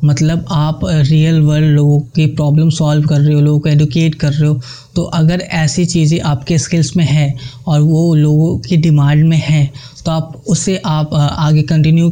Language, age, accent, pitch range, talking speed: Hindi, 20-39, native, 150-165 Hz, 200 wpm